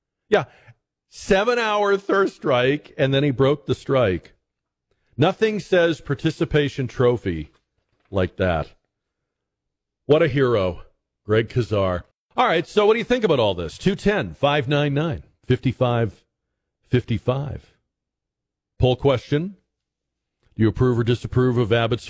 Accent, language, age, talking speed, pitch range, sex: American, English, 50-69, 130 wpm, 105-145 Hz, male